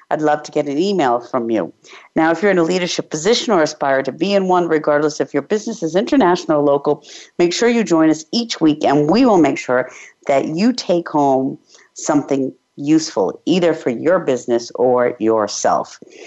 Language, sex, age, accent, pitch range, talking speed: English, female, 50-69, American, 140-185 Hz, 195 wpm